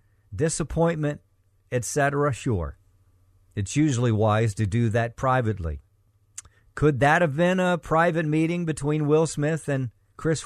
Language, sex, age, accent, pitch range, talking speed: English, male, 50-69, American, 100-150 Hz, 125 wpm